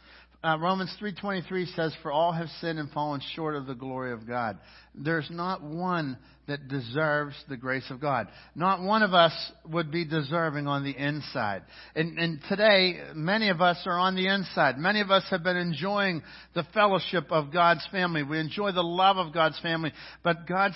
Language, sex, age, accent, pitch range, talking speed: English, male, 60-79, American, 150-185 Hz, 190 wpm